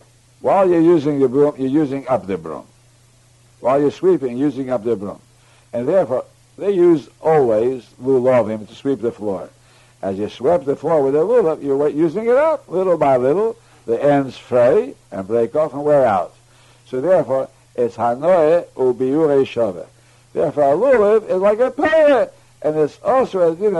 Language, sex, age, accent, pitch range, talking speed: English, male, 60-79, American, 120-160 Hz, 175 wpm